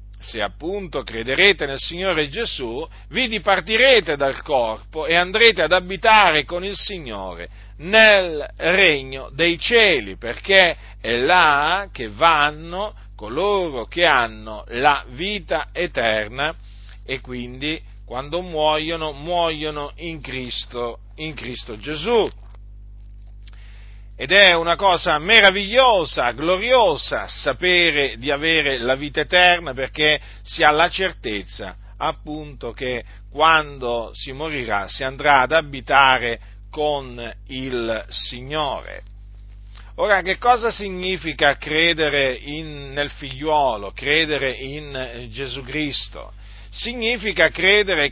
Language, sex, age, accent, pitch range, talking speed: Italian, male, 40-59, native, 120-175 Hz, 105 wpm